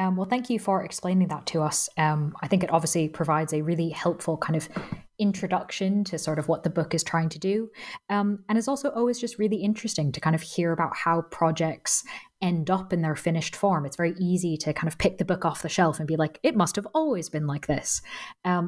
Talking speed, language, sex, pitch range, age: 240 wpm, English, female, 160-195 Hz, 20-39